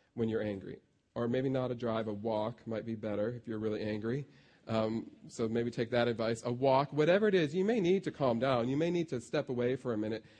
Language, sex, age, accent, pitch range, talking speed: English, male, 40-59, American, 110-130 Hz, 240 wpm